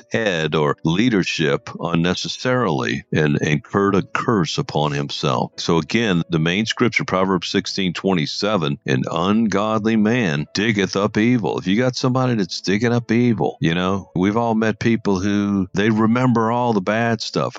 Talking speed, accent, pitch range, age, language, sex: 155 wpm, American, 80-110 Hz, 50-69, English, male